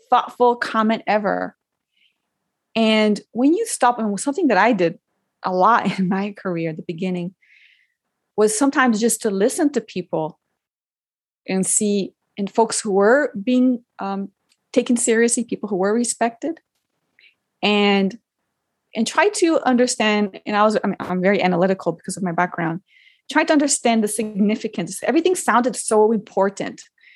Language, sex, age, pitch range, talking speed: English, female, 30-49, 195-275 Hz, 145 wpm